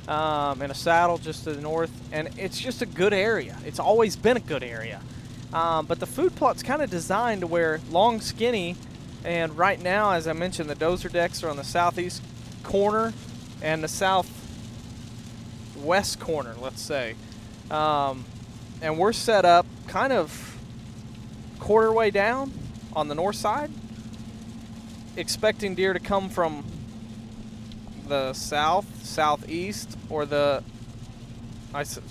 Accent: American